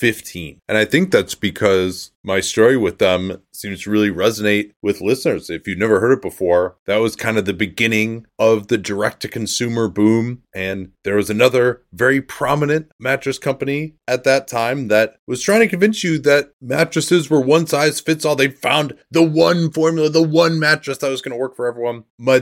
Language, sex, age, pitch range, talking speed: English, male, 30-49, 100-135 Hz, 195 wpm